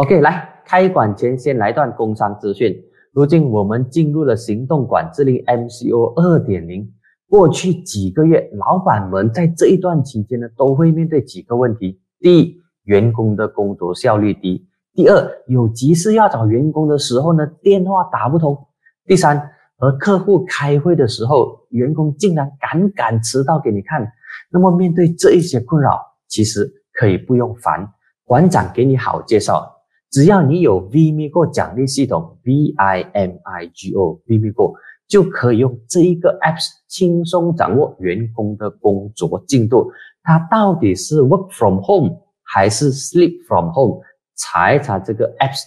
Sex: male